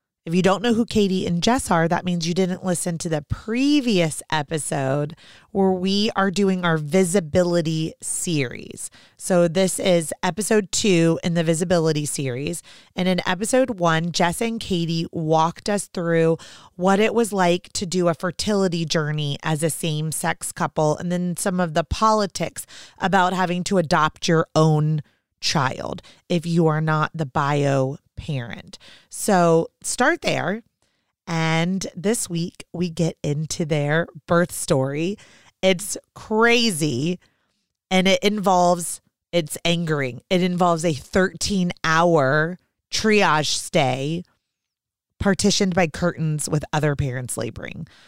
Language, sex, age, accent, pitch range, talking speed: English, female, 30-49, American, 155-190 Hz, 135 wpm